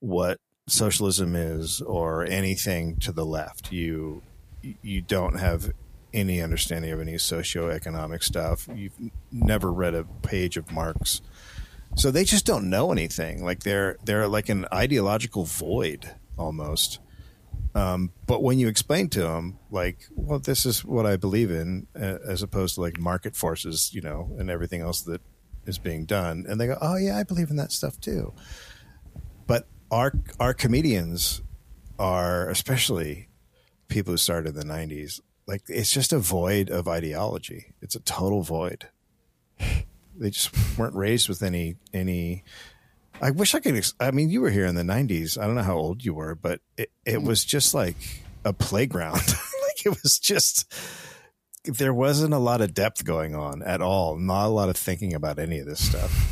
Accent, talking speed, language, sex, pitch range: American, 170 wpm, English, male, 85-110 Hz